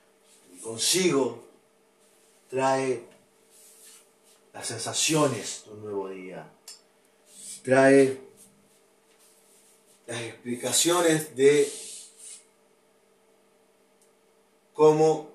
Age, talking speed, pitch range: 40-59, 50 wpm, 145-215 Hz